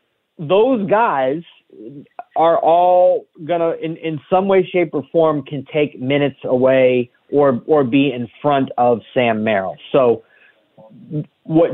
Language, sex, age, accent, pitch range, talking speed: English, male, 30-49, American, 120-150 Hz, 135 wpm